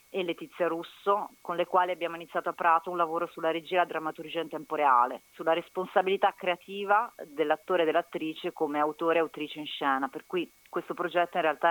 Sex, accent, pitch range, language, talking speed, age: female, native, 155-185 Hz, Italian, 190 wpm, 30-49